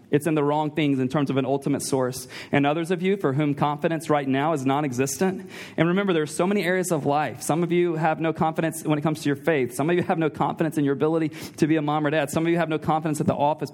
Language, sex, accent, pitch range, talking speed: English, male, American, 145-170 Hz, 295 wpm